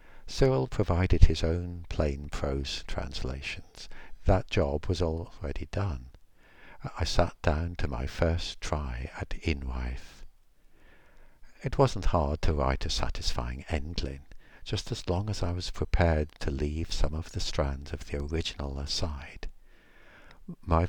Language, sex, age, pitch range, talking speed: English, male, 60-79, 75-95 Hz, 135 wpm